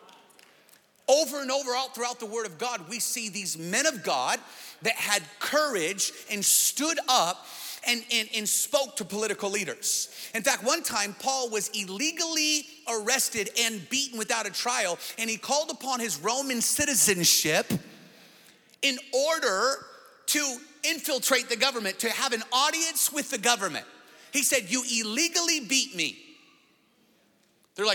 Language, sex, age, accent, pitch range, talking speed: English, male, 40-59, American, 190-270 Hz, 140 wpm